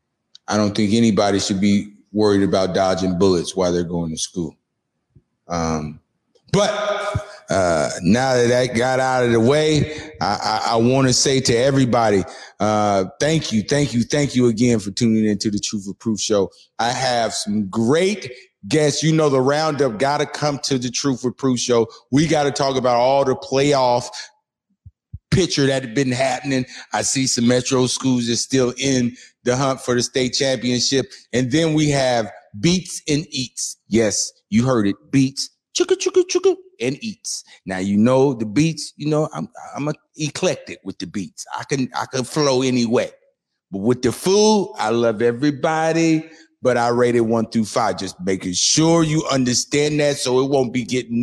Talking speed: 185 wpm